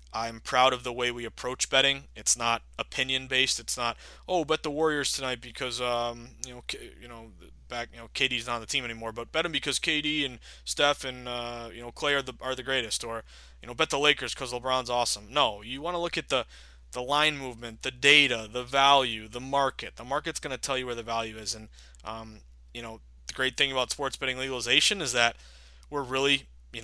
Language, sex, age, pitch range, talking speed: English, male, 20-39, 110-130 Hz, 230 wpm